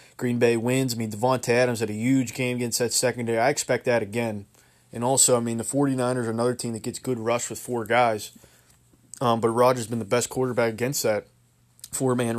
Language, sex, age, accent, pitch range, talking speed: English, male, 20-39, American, 115-125 Hz, 220 wpm